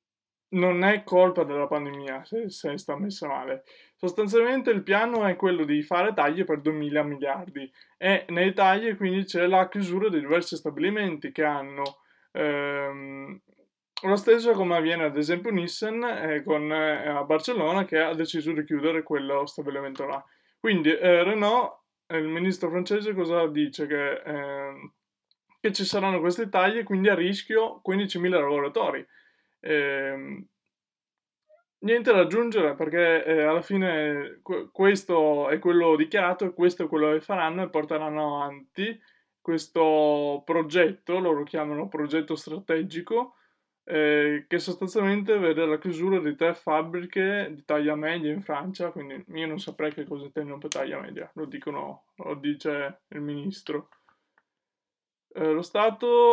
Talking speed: 145 wpm